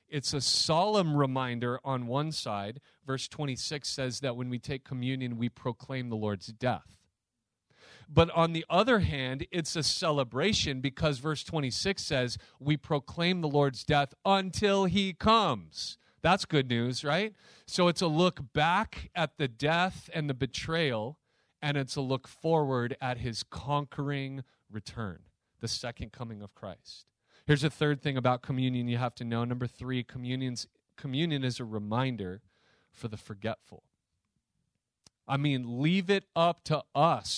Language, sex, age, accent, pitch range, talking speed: English, male, 40-59, American, 125-165 Hz, 155 wpm